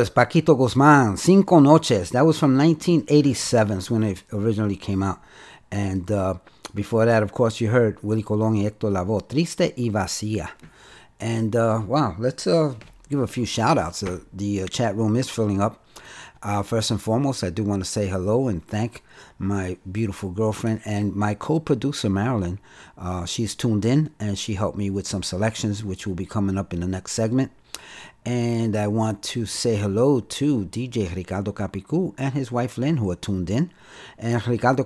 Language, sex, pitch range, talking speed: Spanish, male, 100-125 Hz, 185 wpm